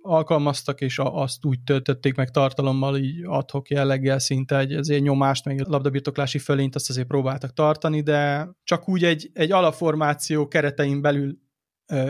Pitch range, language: 135-160 Hz, Hungarian